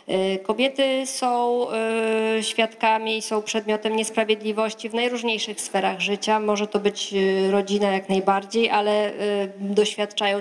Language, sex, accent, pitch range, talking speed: Polish, female, native, 200-220 Hz, 110 wpm